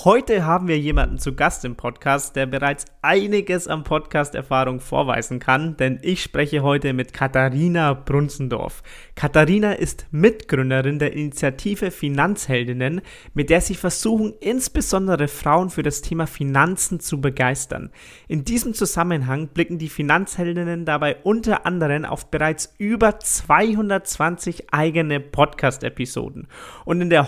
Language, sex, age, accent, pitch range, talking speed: German, male, 30-49, German, 140-190 Hz, 130 wpm